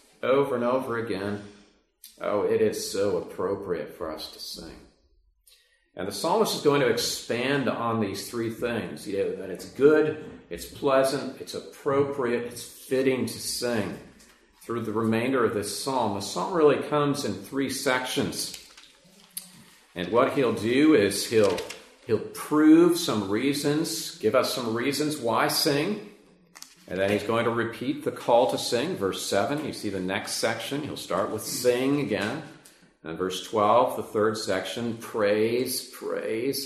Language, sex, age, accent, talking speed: English, male, 40-59, American, 160 wpm